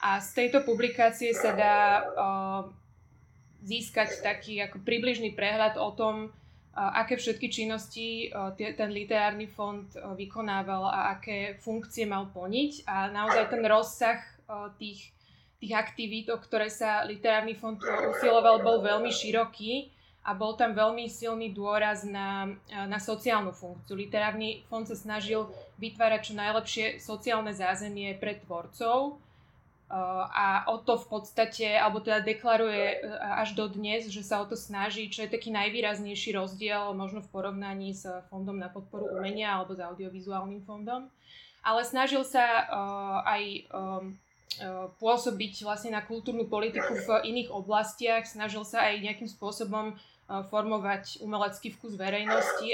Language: Slovak